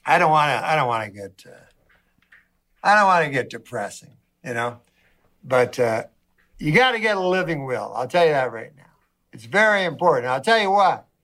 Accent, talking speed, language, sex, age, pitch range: American, 215 wpm, Danish, male, 60-79, 155-230 Hz